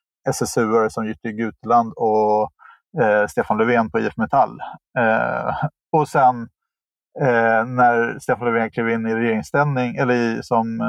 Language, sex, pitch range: Swedish, male, 115-140 Hz